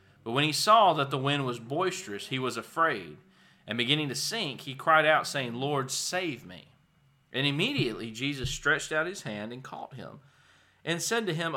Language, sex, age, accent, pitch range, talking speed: English, male, 40-59, American, 120-155 Hz, 190 wpm